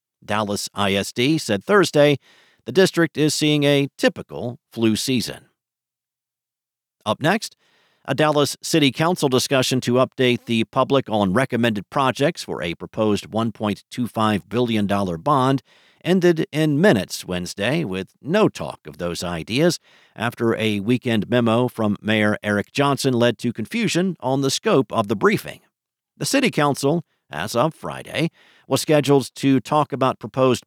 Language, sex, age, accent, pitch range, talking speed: English, male, 50-69, American, 105-140 Hz, 140 wpm